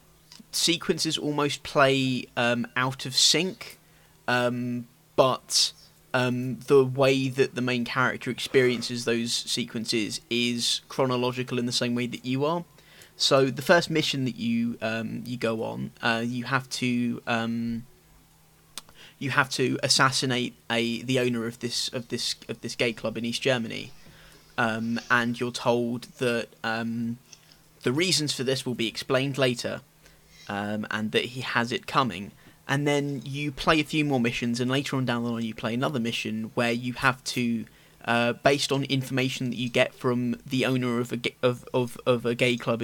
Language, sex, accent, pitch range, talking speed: English, male, British, 115-130 Hz, 170 wpm